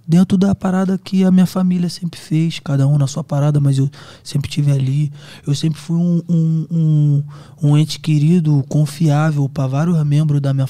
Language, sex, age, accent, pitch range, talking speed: Portuguese, male, 20-39, Brazilian, 135-150 Hz, 180 wpm